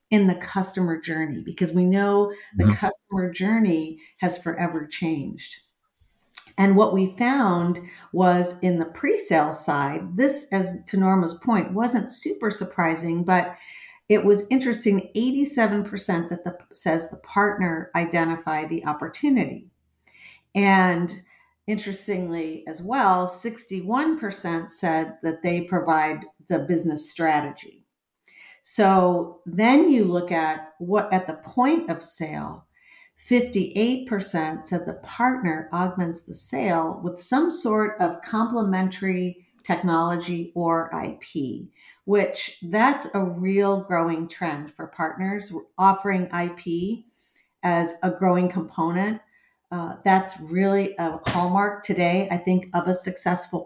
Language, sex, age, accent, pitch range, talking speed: English, female, 50-69, American, 170-205 Hz, 120 wpm